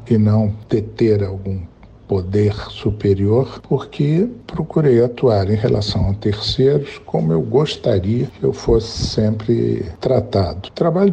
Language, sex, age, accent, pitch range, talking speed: Portuguese, male, 60-79, Brazilian, 105-135 Hz, 125 wpm